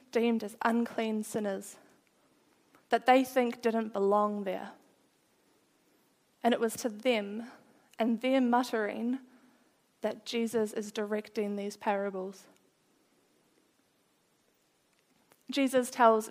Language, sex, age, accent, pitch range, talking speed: English, female, 20-39, Australian, 215-250 Hz, 95 wpm